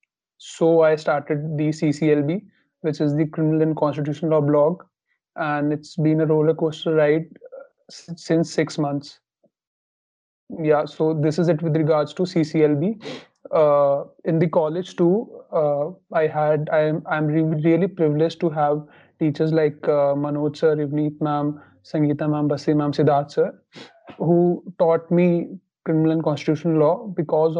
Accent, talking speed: Indian, 150 wpm